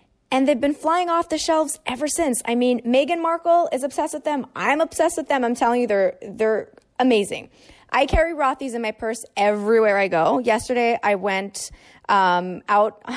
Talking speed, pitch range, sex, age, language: 185 wpm, 210-290 Hz, female, 20-39, English